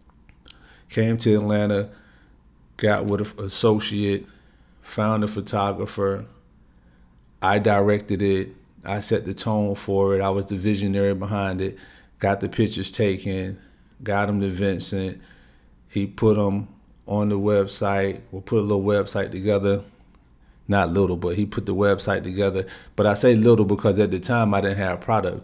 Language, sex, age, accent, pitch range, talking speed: English, male, 40-59, American, 95-105 Hz, 160 wpm